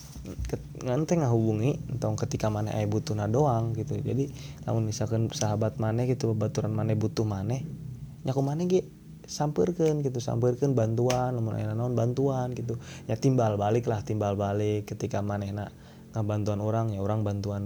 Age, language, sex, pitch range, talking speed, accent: 20-39, Indonesian, male, 105-130 Hz, 160 wpm, native